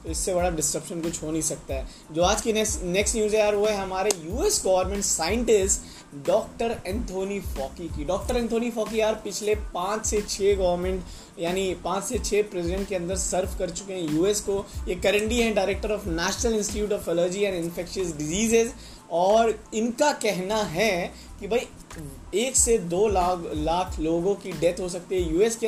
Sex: male